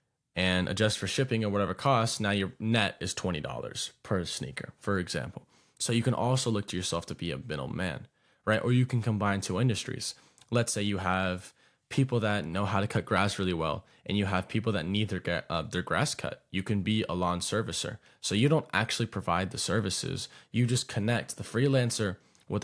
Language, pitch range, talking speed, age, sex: English, 95-125 Hz, 205 wpm, 20-39, male